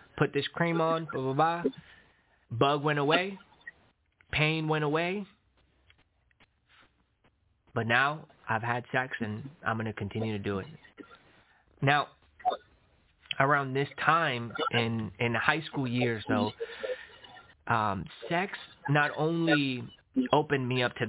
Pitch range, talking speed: 120-150 Hz, 125 wpm